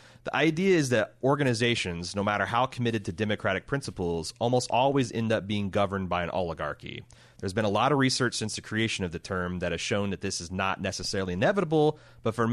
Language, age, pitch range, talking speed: English, 30-49, 95-120 Hz, 215 wpm